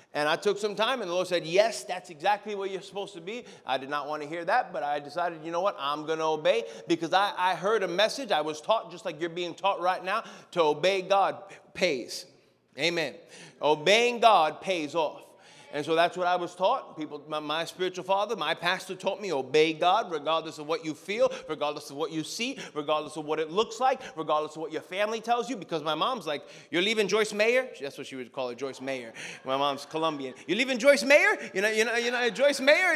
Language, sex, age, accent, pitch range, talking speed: English, male, 30-49, American, 170-230 Hz, 240 wpm